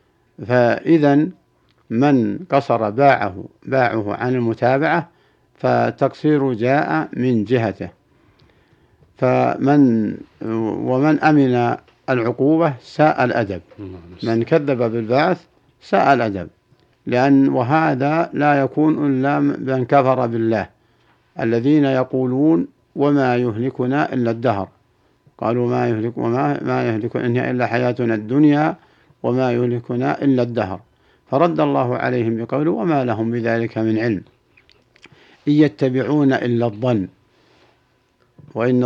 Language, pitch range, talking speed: Arabic, 115-140 Hz, 95 wpm